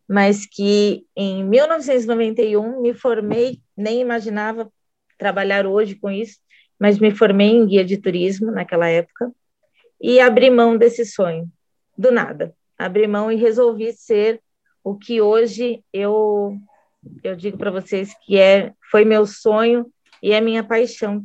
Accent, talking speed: Brazilian, 140 wpm